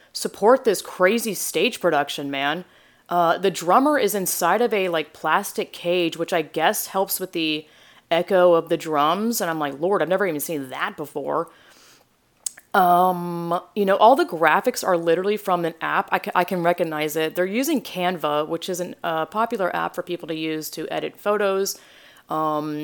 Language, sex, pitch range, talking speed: English, female, 160-200 Hz, 180 wpm